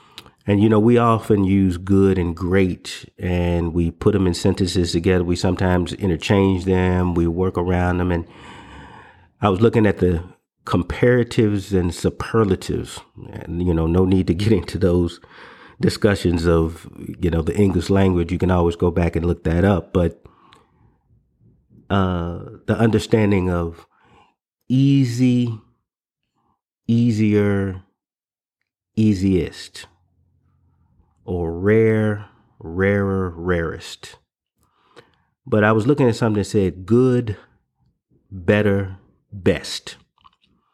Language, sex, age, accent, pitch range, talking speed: English, male, 30-49, American, 90-110 Hz, 120 wpm